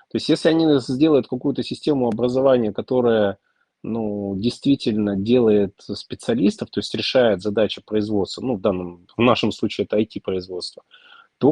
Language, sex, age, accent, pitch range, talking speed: Russian, male, 30-49, native, 100-135 Hz, 140 wpm